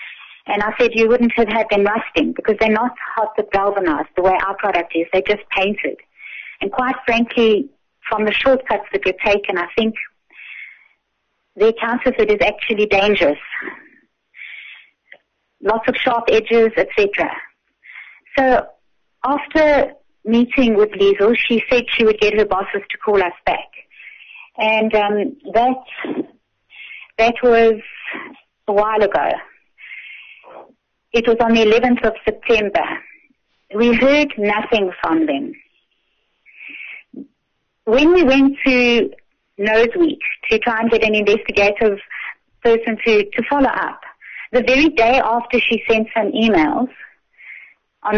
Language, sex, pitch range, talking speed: English, female, 210-255 Hz, 135 wpm